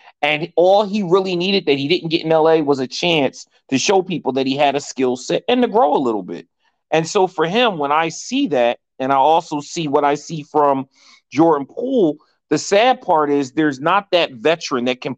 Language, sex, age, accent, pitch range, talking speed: English, male, 30-49, American, 120-155 Hz, 225 wpm